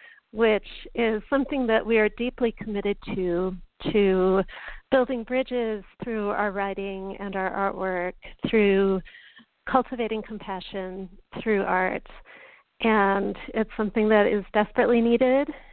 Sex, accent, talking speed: female, American, 115 wpm